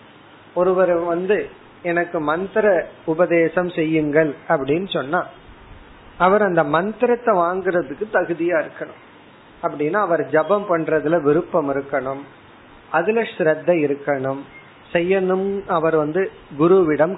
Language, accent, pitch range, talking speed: Tamil, native, 145-190 Hz, 55 wpm